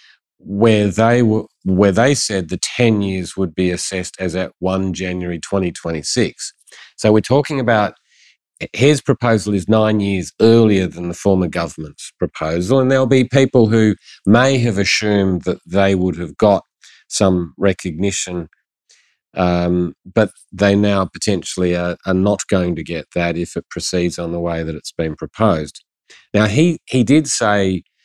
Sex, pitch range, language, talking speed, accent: male, 90-110 Hz, English, 160 wpm, Australian